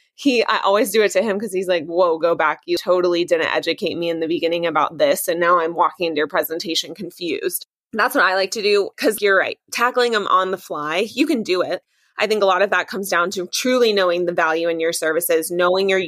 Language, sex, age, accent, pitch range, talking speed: English, female, 20-39, American, 170-195 Hz, 250 wpm